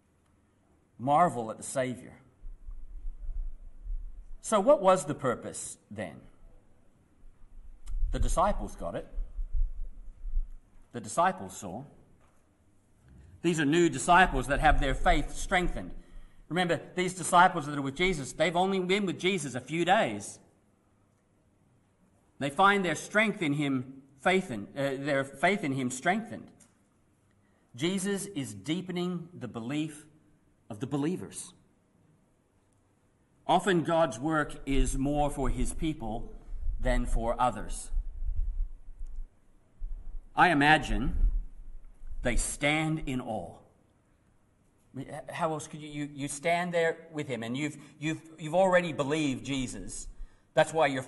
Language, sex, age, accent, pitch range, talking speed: English, male, 40-59, Australian, 100-160 Hz, 115 wpm